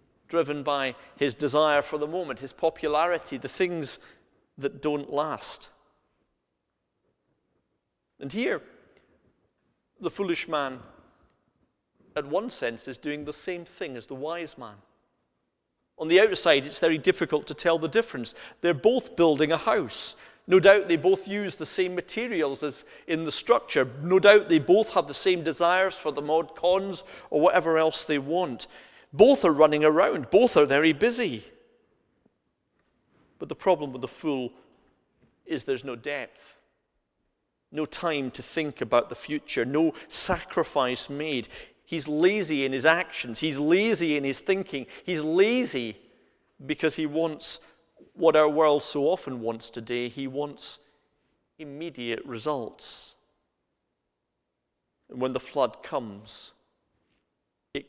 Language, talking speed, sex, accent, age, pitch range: English, 140 wpm, male, British, 40-59, 130-170 Hz